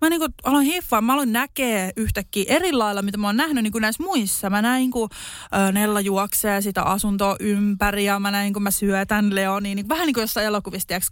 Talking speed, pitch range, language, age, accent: 200 wpm, 200-245 Hz, Finnish, 20-39, native